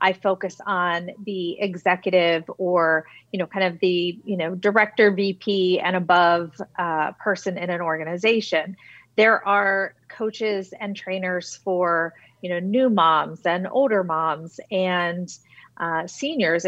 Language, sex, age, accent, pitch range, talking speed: English, female, 40-59, American, 175-205 Hz, 135 wpm